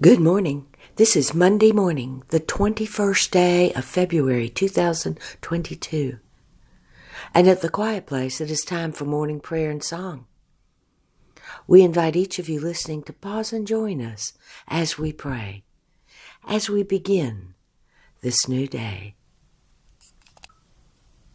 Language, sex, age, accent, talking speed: English, female, 60-79, American, 125 wpm